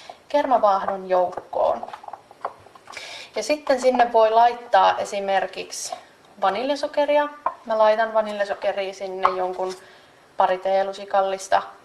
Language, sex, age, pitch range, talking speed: Finnish, female, 20-39, 195-240 Hz, 75 wpm